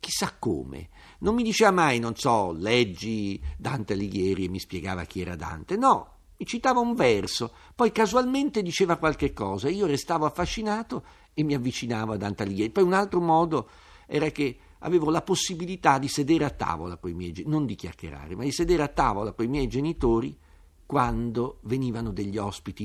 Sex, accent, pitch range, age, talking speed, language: male, native, 95-145 Hz, 50-69, 180 wpm, Italian